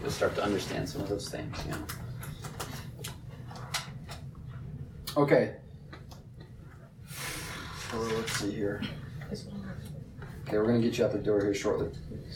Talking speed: 120 wpm